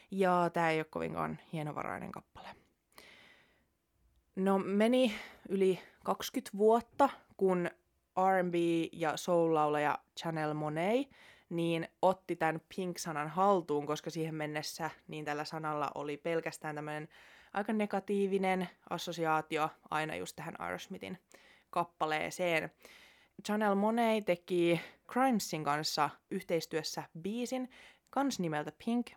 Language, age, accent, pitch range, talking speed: Finnish, 20-39, native, 155-195 Hz, 105 wpm